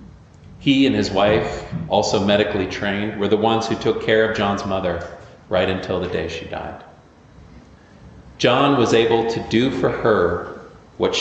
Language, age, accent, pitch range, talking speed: English, 40-59, American, 95-115 Hz, 160 wpm